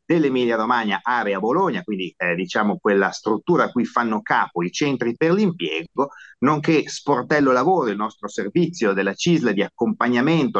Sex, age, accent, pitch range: male, 30-49, native, 100-150 Hz